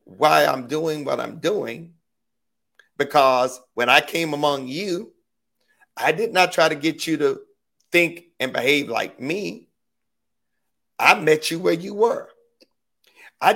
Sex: male